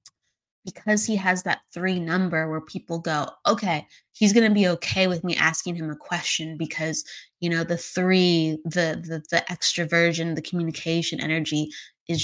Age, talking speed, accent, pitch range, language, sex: 20-39, 165 wpm, American, 165-200 Hz, English, female